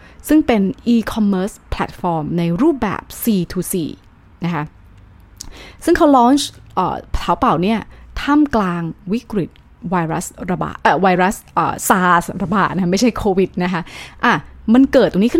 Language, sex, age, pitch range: Thai, female, 20-39, 170-230 Hz